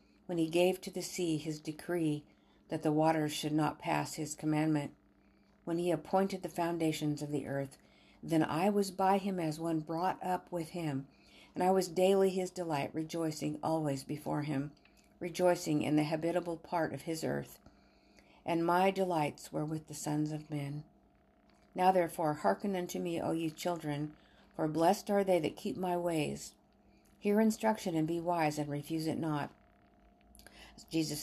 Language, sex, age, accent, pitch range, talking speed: English, female, 50-69, American, 150-175 Hz, 170 wpm